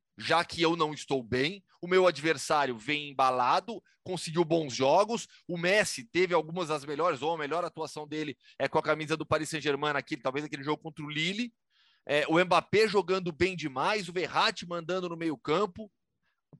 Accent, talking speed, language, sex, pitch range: Brazilian, 185 wpm, Portuguese, male, 150-195 Hz